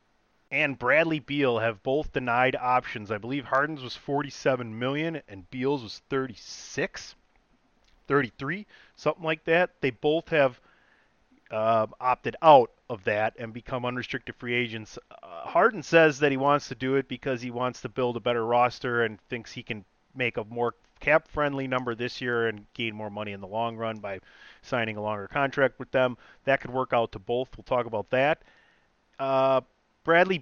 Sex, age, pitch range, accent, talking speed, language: male, 30-49, 120-145 Hz, American, 175 wpm, English